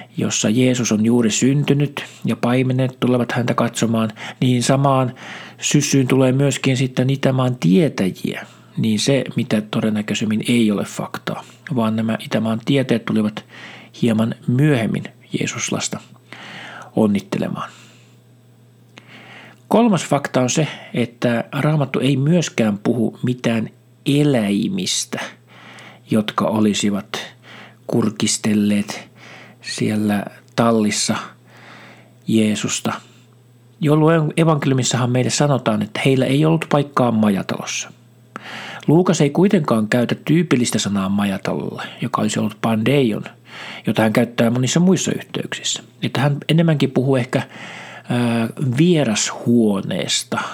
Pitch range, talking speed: 110-140 Hz, 100 wpm